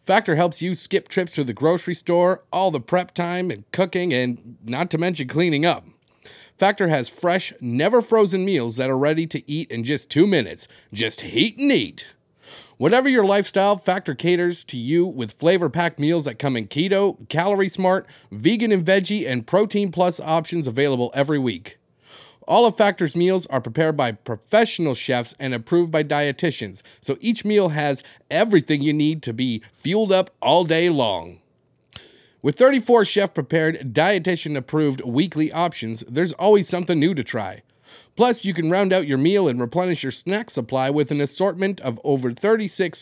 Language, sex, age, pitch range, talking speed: English, male, 30-49, 135-190 Hz, 165 wpm